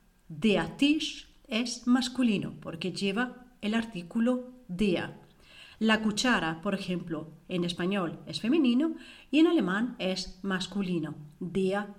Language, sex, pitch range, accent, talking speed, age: Spanish, female, 185-265 Hz, Spanish, 115 wpm, 40-59